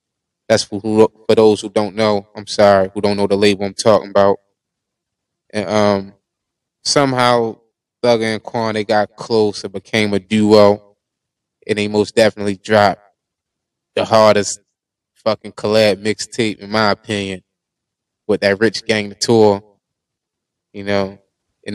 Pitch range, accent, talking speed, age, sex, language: 100-115 Hz, American, 145 wpm, 20-39, male, English